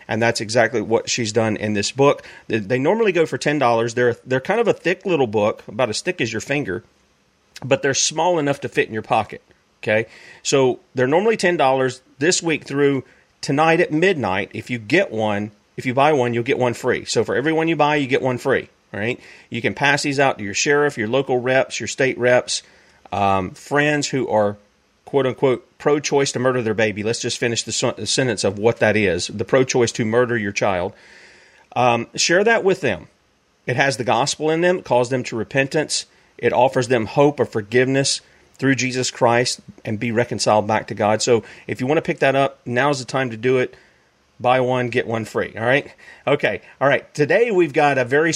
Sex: male